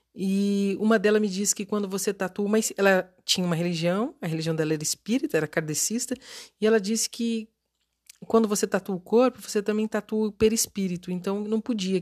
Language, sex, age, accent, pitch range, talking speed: Portuguese, female, 40-59, Brazilian, 170-220 Hz, 190 wpm